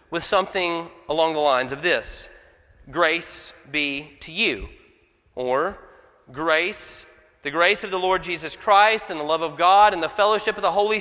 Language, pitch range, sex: English, 160-220 Hz, male